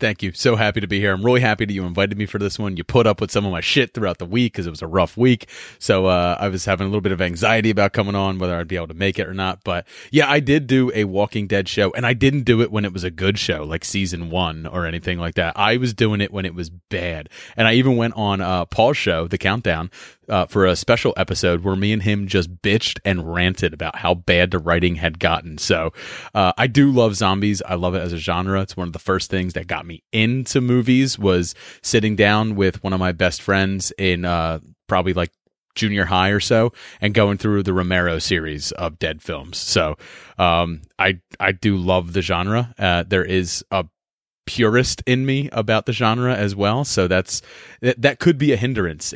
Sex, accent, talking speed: male, American, 240 wpm